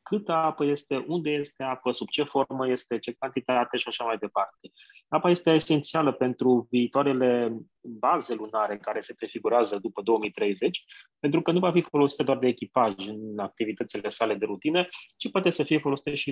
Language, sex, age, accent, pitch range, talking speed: Romanian, male, 20-39, native, 115-145 Hz, 175 wpm